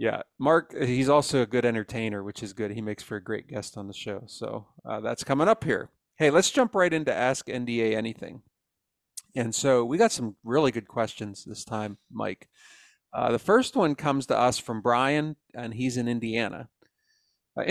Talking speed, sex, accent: 195 wpm, male, American